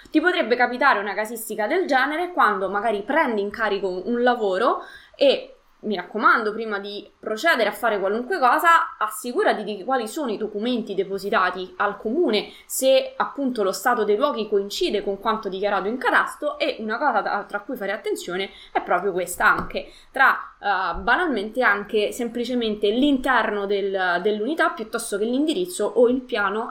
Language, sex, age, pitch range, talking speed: Italian, female, 20-39, 200-245 Hz, 160 wpm